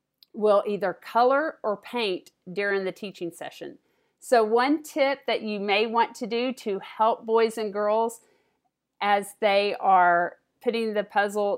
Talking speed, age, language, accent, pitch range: 150 wpm, 50-69, English, American, 200-245 Hz